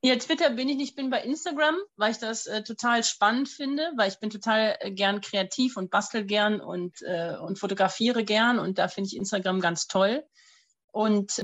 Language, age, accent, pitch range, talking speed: German, 30-49, German, 195-225 Hz, 195 wpm